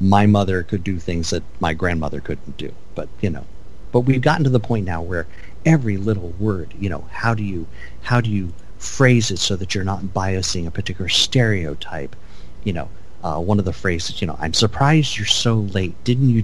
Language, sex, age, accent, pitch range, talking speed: English, male, 50-69, American, 85-110 Hz, 210 wpm